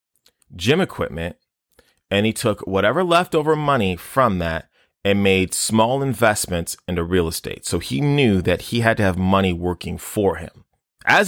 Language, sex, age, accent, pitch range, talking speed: English, male, 30-49, American, 90-120 Hz, 160 wpm